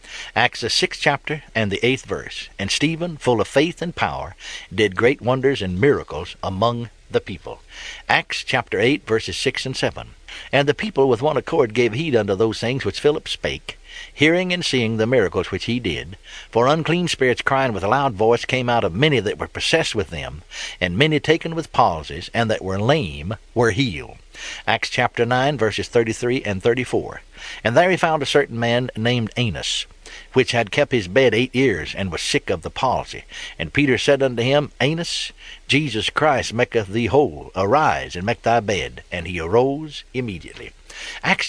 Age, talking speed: 60-79, 190 wpm